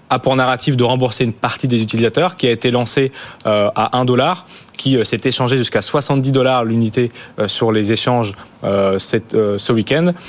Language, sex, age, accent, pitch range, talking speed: French, male, 20-39, French, 110-130 Hz, 165 wpm